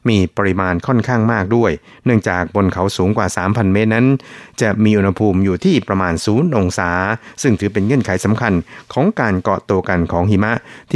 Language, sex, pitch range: Thai, male, 90-115 Hz